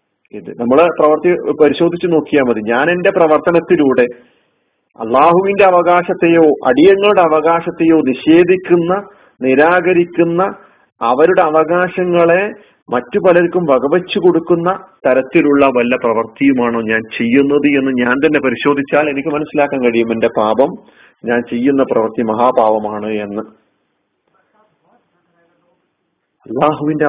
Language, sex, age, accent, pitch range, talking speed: Malayalam, male, 40-59, native, 135-180 Hz, 85 wpm